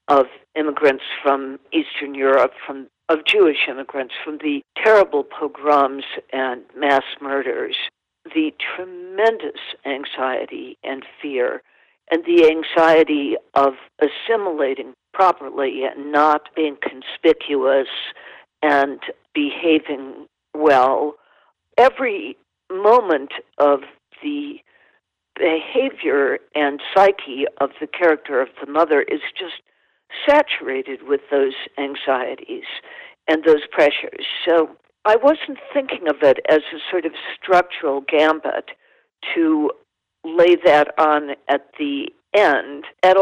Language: English